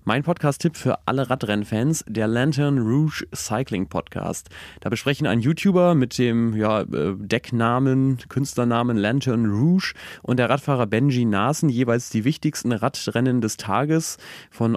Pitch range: 110-140 Hz